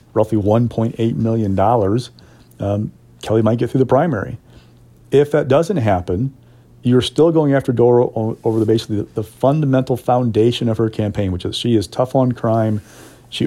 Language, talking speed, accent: English, 165 wpm, American